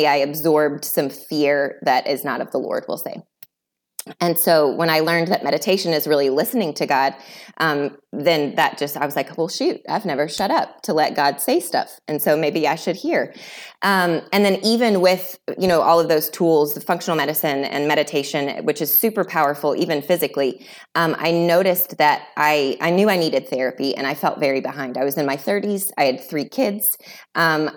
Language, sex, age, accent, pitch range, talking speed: English, female, 20-39, American, 145-180 Hz, 205 wpm